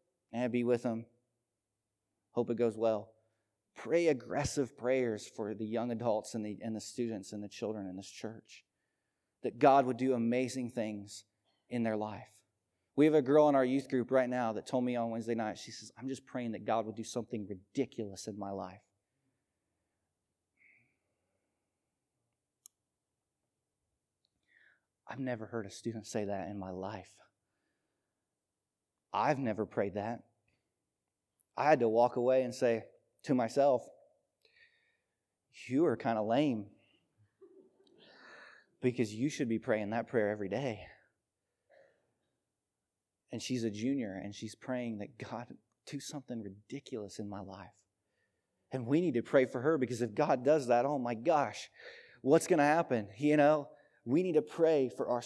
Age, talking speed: 30-49, 155 wpm